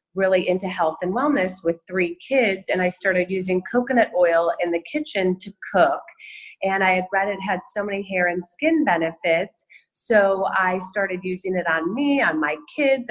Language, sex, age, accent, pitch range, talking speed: English, female, 30-49, American, 175-205 Hz, 190 wpm